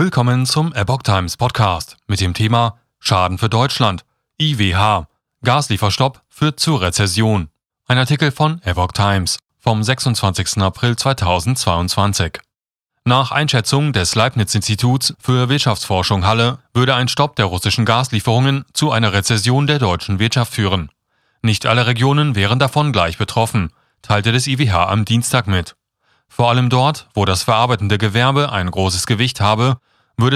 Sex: male